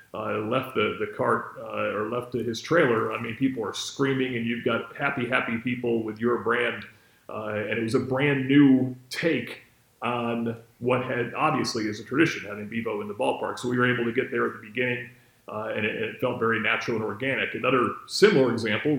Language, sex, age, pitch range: English, male, 40-59, 115-135 Hz